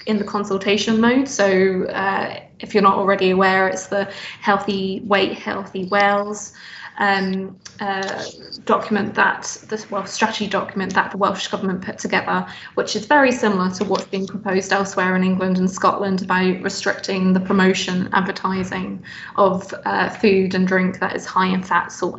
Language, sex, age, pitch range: English, female, 20-39, 190-205 Hz